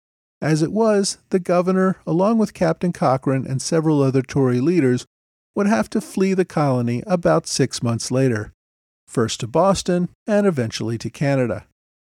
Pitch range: 120-185 Hz